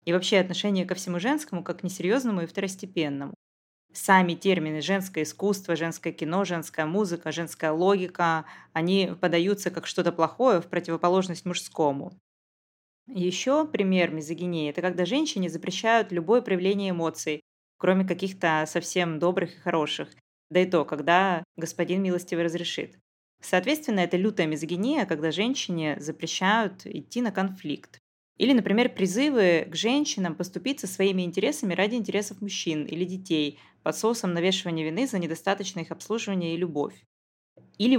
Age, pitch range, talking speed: 20-39, 165-195 Hz, 135 wpm